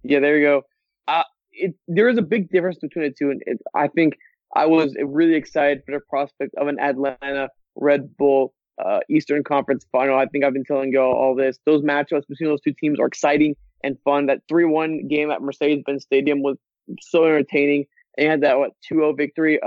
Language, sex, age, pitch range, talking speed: English, male, 20-39, 145-170 Hz, 205 wpm